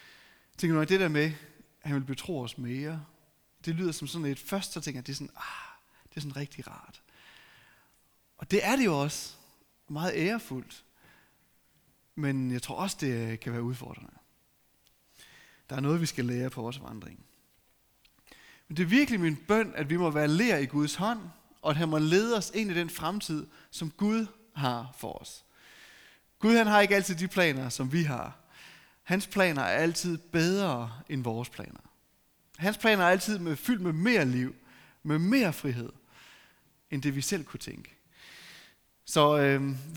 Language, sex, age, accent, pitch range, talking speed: Danish, male, 30-49, native, 130-180 Hz, 180 wpm